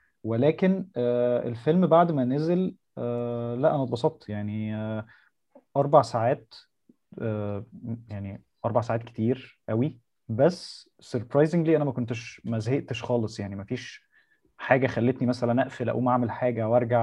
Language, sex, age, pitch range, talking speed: Arabic, male, 20-39, 115-150 Hz, 120 wpm